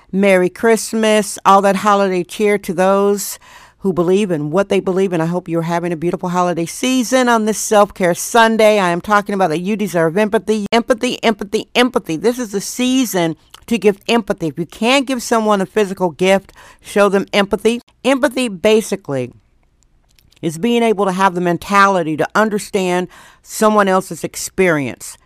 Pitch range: 180-220 Hz